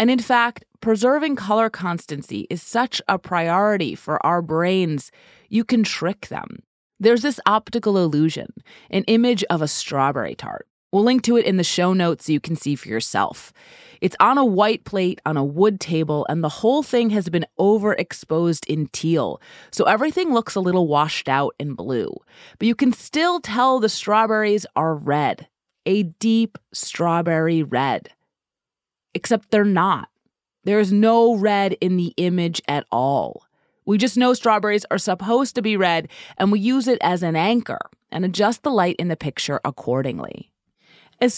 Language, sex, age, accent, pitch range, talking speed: English, female, 30-49, American, 160-225 Hz, 170 wpm